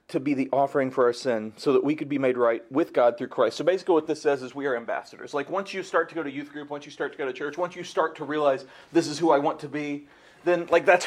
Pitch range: 155-205 Hz